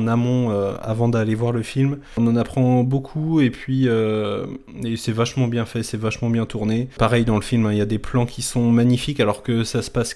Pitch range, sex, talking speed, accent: 110-130 Hz, male, 250 wpm, French